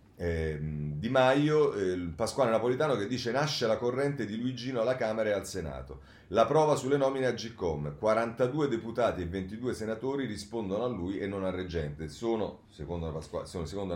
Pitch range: 85-115 Hz